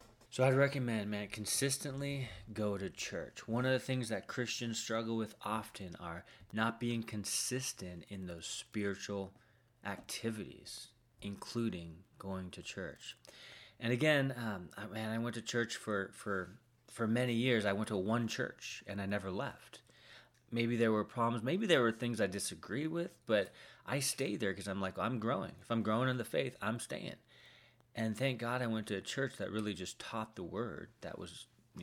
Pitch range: 100-120 Hz